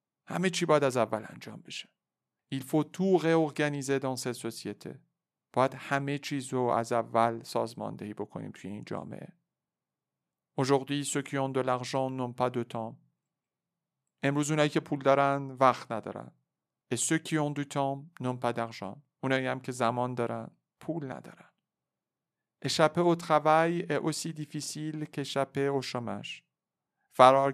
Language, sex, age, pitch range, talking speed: Persian, male, 50-69, 125-145 Hz, 140 wpm